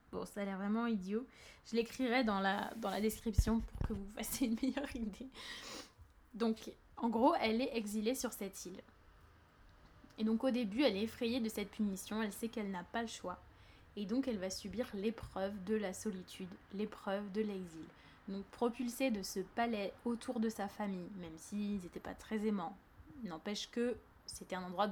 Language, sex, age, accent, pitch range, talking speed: French, female, 20-39, French, 195-240 Hz, 190 wpm